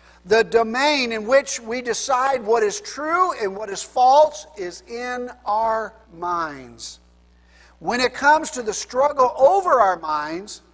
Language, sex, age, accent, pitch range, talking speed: English, male, 50-69, American, 195-270 Hz, 145 wpm